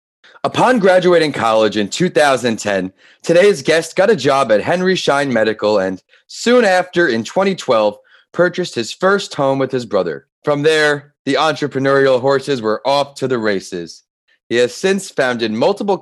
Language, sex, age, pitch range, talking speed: English, male, 30-49, 115-145 Hz, 155 wpm